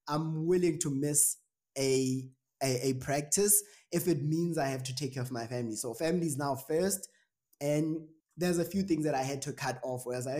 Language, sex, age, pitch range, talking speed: English, male, 20-39, 125-155 Hz, 220 wpm